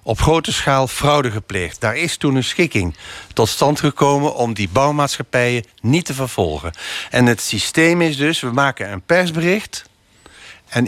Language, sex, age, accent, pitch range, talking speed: Dutch, male, 50-69, Dutch, 115-160 Hz, 160 wpm